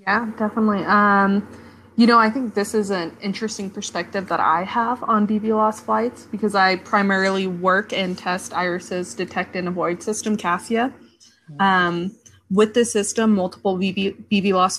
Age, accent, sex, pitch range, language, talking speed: 20-39, American, female, 180-210 Hz, English, 160 wpm